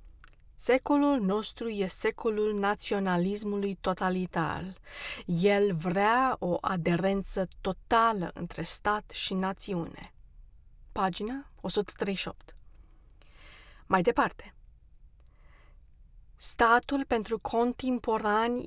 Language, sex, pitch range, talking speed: Romanian, female, 180-225 Hz, 70 wpm